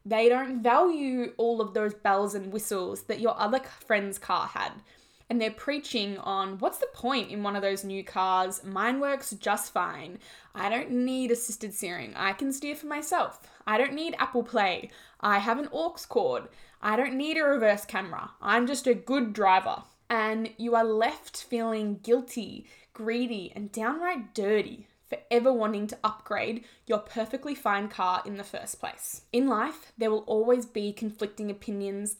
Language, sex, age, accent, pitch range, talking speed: English, female, 10-29, Australian, 210-250 Hz, 175 wpm